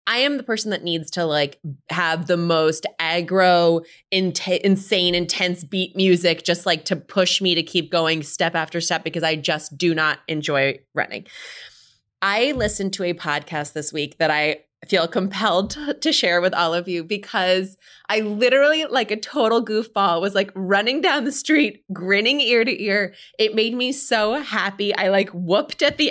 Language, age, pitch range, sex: English, 20-39, 165-210 Hz, female